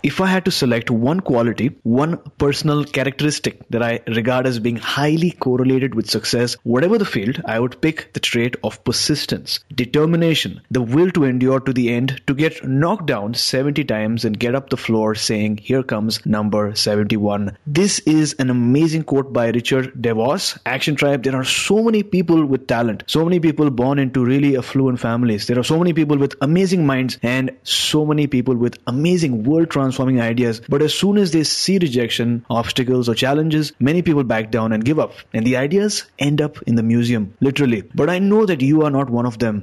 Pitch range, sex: 120-150 Hz, male